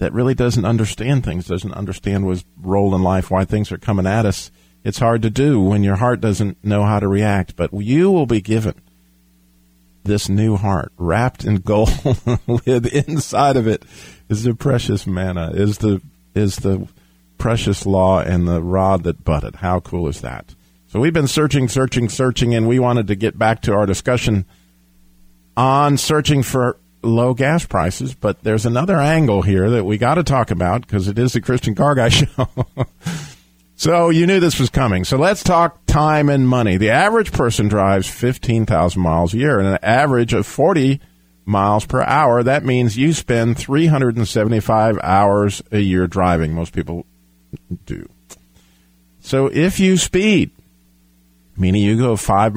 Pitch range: 90-125 Hz